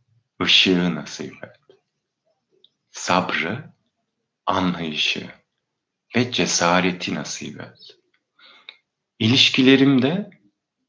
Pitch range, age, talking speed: 90-130 Hz, 50-69, 55 wpm